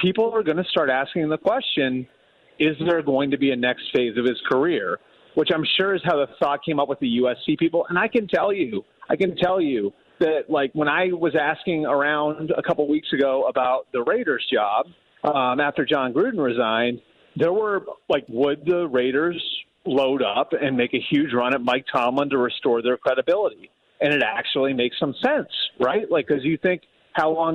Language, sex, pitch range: English, male, 135-180 Hz